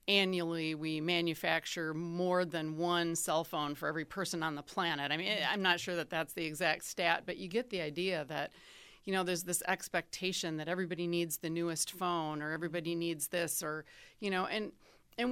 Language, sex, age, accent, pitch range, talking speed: English, female, 30-49, American, 160-185 Hz, 195 wpm